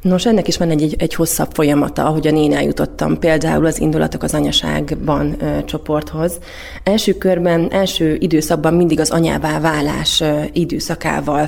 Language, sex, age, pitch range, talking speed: Hungarian, female, 30-49, 150-175 Hz, 140 wpm